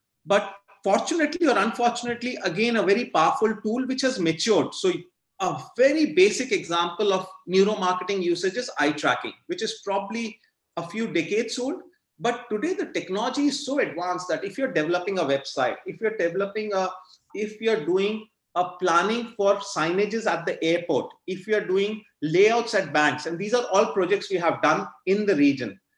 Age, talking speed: 30-49, 170 wpm